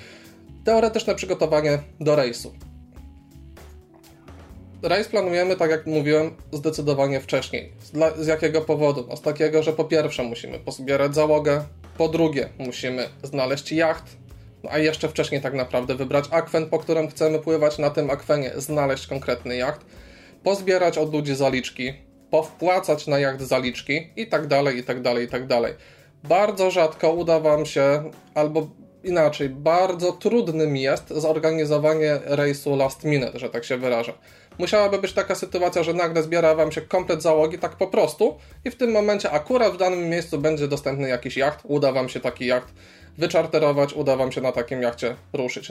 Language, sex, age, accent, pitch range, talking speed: Polish, male, 20-39, native, 135-180 Hz, 155 wpm